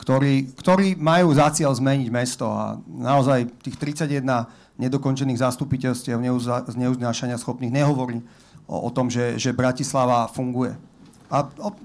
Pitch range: 120-150 Hz